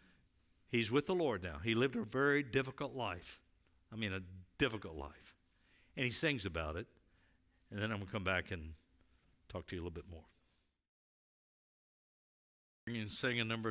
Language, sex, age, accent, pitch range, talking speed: English, male, 60-79, American, 90-115 Hz, 175 wpm